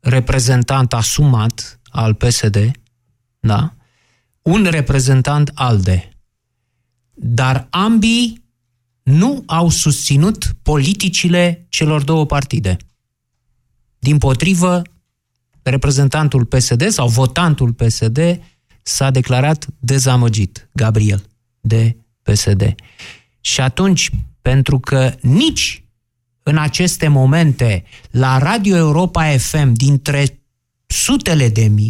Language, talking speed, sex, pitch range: Romanian, 90 wpm, male, 120-160 Hz